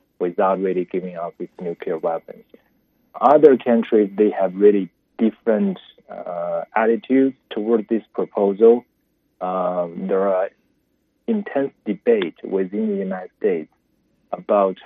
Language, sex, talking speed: English, male, 115 wpm